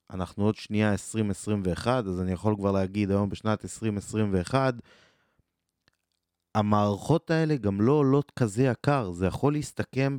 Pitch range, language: 95-120 Hz, Hebrew